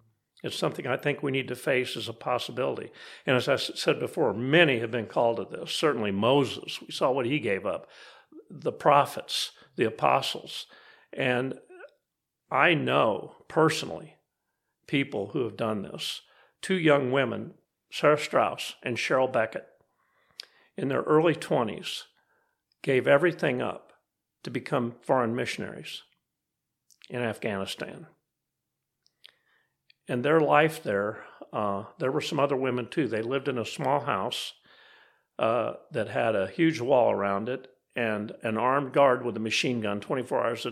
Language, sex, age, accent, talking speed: English, male, 50-69, American, 145 wpm